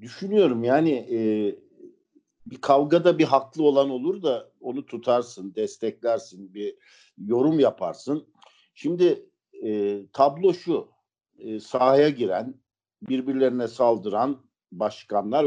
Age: 50-69